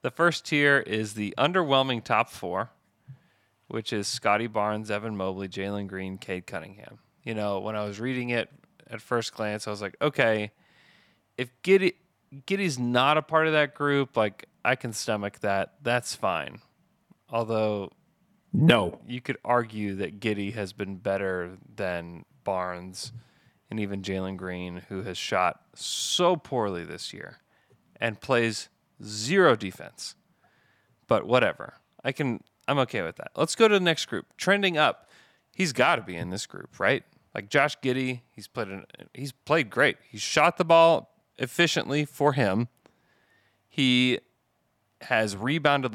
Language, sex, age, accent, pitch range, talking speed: English, male, 30-49, American, 105-140 Hz, 155 wpm